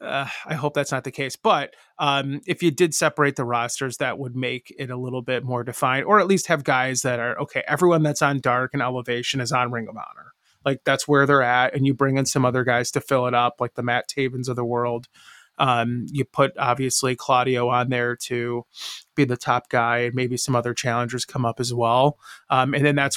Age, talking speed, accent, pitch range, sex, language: 30-49, 235 wpm, American, 120-140 Hz, male, English